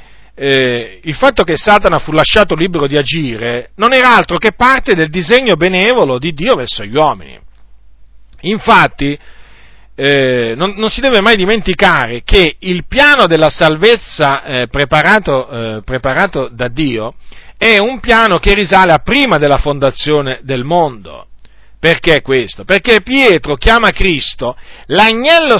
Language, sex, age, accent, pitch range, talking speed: Italian, male, 40-59, native, 145-220 Hz, 140 wpm